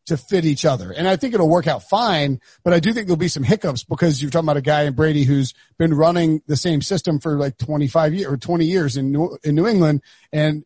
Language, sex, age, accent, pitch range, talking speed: English, male, 30-49, American, 145-180 Hz, 260 wpm